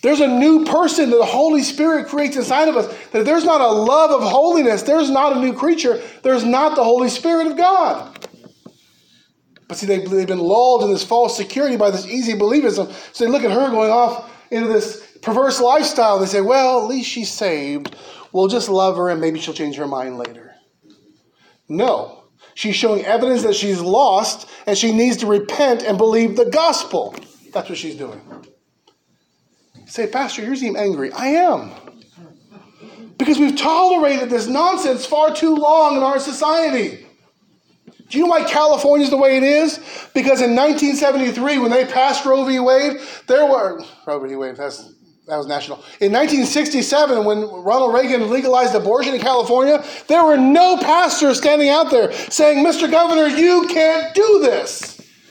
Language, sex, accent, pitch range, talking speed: English, male, American, 225-300 Hz, 175 wpm